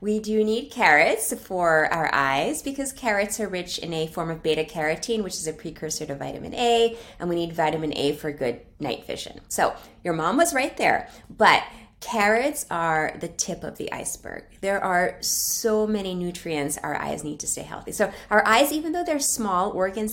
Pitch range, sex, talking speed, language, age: 160-210 Hz, female, 195 wpm, English, 20-39